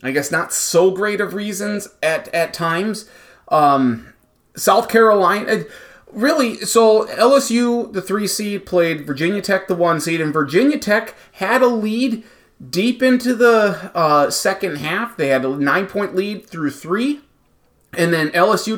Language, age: English, 30-49